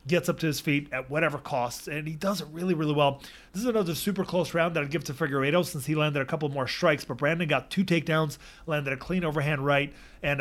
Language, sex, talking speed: English, male, 255 wpm